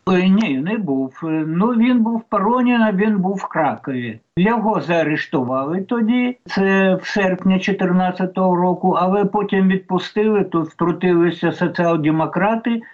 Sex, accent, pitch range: male, native, 165-210 Hz